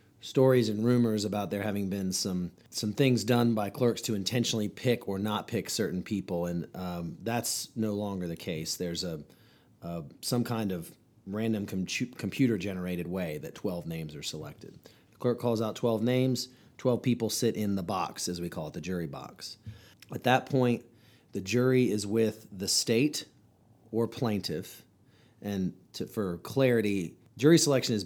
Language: English